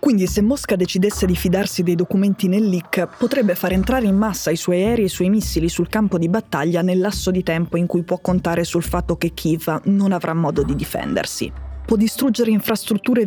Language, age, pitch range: Italian, 20-39, 170-200 Hz